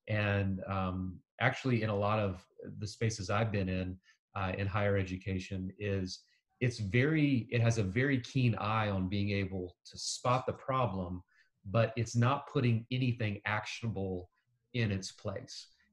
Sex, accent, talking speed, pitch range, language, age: male, American, 155 wpm, 100-130 Hz, English, 40-59